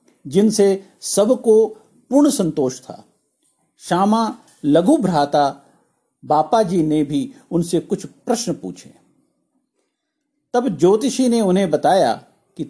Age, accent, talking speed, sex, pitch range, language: 50-69, native, 100 wpm, male, 170-245 Hz, Hindi